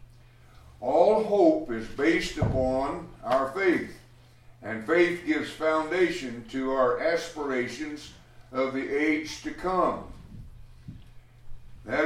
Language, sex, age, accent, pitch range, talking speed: English, male, 60-79, American, 120-160 Hz, 100 wpm